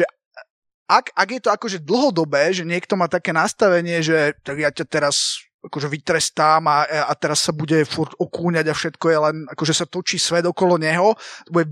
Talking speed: 190 wpm